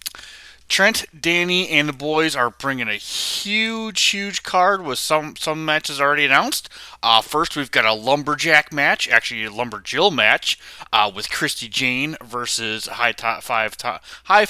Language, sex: English, male